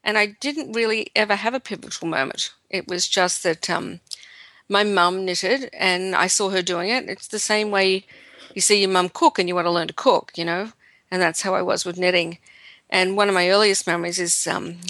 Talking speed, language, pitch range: 225 wpm, English, 180-230 Hz